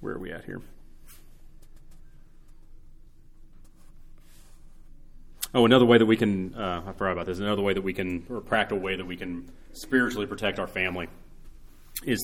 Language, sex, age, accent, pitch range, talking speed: English, male, 30-49, American, 85-100 Hz, 160 wpm